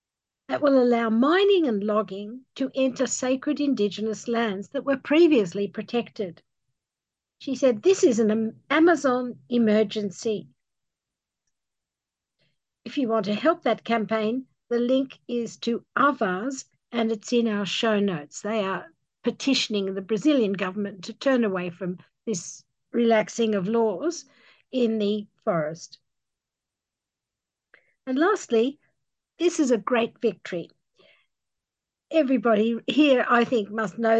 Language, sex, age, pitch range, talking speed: English, female, 60-79, 200-255 Hz, 120 wpm